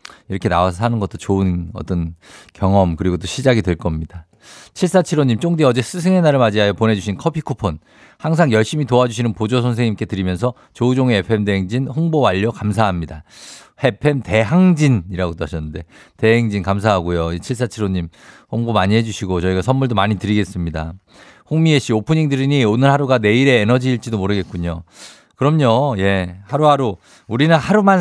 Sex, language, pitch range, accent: male, Korean, 100-140 Hz, native